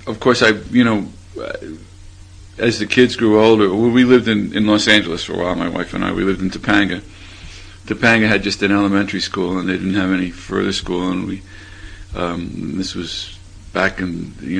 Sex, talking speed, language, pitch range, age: male, 200 wpm, English, 95-105 Hz, 50-69